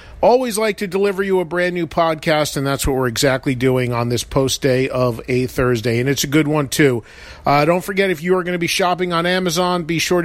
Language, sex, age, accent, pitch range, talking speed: English, male, 40-59, American, 135-170 Hz, 245 wpm